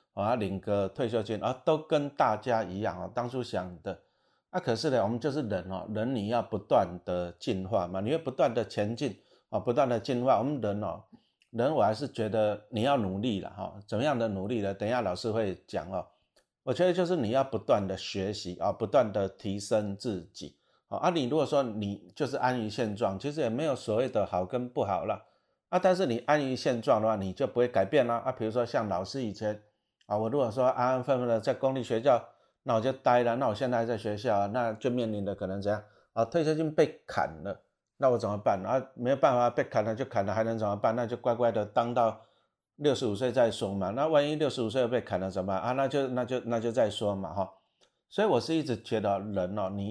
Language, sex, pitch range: Chinese, male, 100-130 Hz